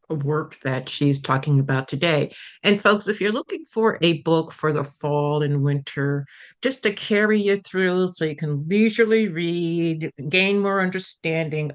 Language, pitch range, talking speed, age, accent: English, 145-175 Hz, 165 wpm, 60-79, American